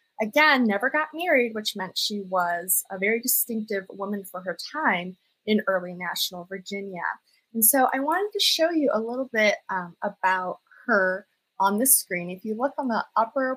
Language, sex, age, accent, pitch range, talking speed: English, female, 20-39, American, 185-235 Hz, 180 wpm